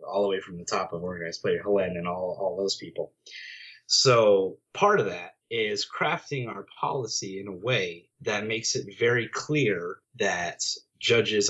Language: English